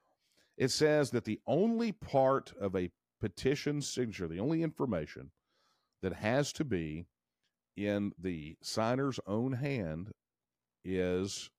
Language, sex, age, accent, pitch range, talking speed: English, male, 50-69, American, 100-150 Hz, 120 wpm